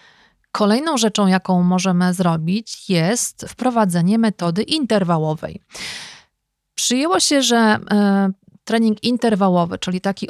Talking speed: 95 wpm